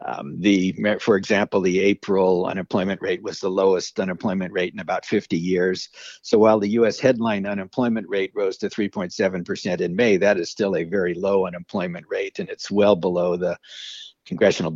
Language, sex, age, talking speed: English, male, 60-79, 175 wpm